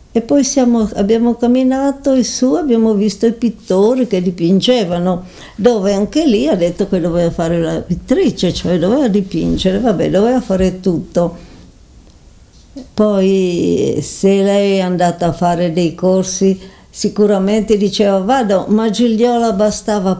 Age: 60-79